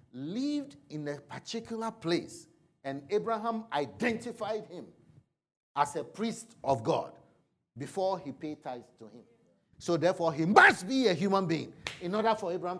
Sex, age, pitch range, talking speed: male, 50-69, 145-205 Hz, 150 wpm